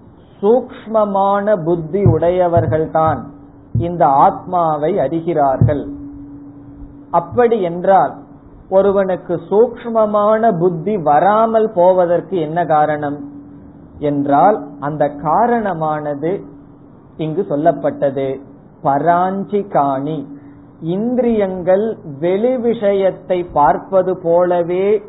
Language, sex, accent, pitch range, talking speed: Tamil, male, native, 145-185 Hz, 60 wpm